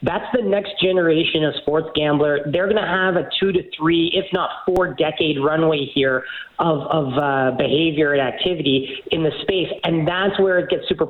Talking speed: 195 wpm